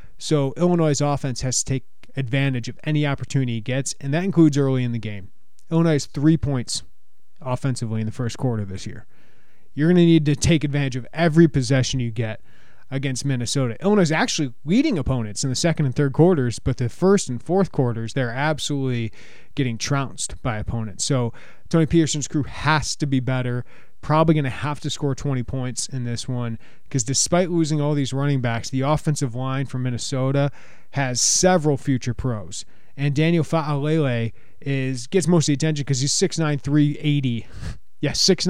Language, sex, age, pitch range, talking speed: English, male, 30-49, 125-155 Hz, 185 wpm